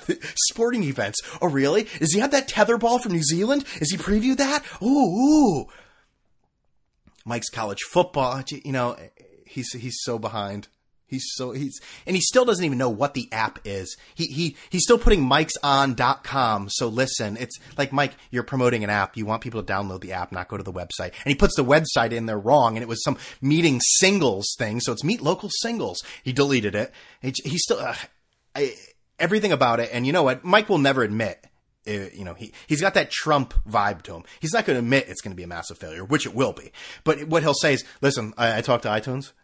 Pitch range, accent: 115-165 Hz, American